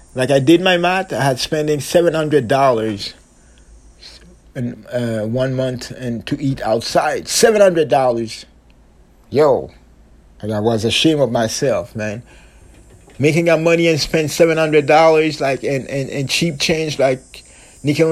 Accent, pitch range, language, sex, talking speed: American, 125-160 Hz, English, male, 155 wpm